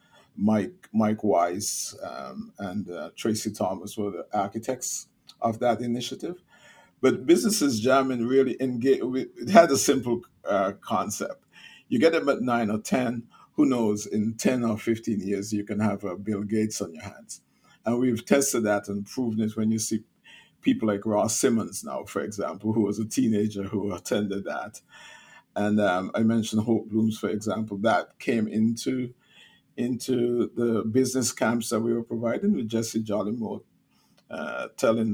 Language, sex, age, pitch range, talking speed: English, male, 50-69, 105-125 Hz, 165 wpm